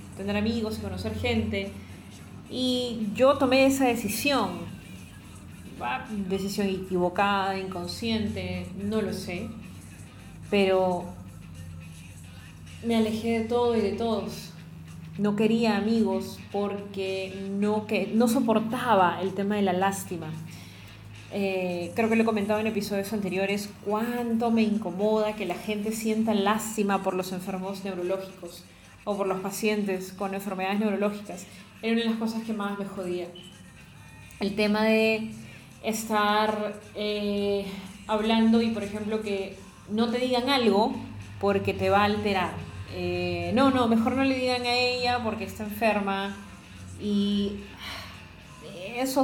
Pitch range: 180-225 Hz